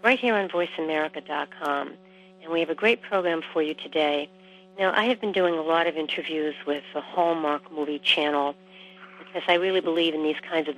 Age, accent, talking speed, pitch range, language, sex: 60-79, American, 195 wpm, 155-185 Hz, English, female